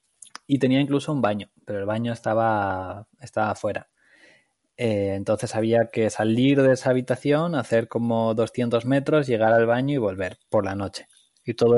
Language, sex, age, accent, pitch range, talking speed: Spanish, male, 20-39, Spanish, 105-130 Hz, 170 wpm